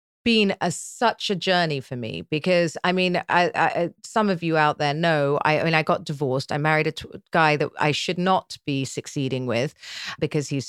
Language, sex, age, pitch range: English, female, 40-59, 150-215 Hz